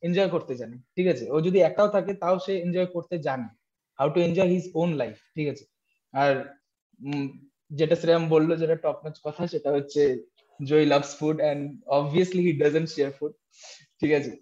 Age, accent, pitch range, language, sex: 20-39, native, 145-190 Hz, Bengali, male